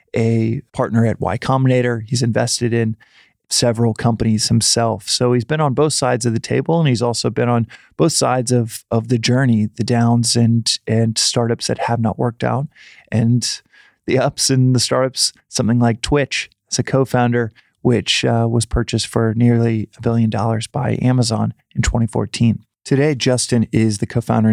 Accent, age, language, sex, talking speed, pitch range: American, 20-39, English, male, 170 wpm, 110-125 Hz